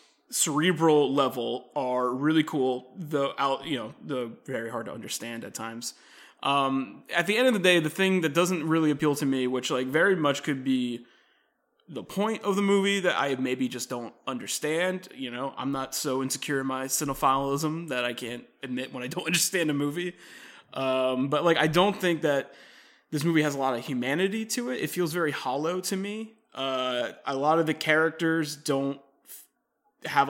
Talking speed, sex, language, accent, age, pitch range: 190 wpm, male, English, American, 20-39, 130-170 Hz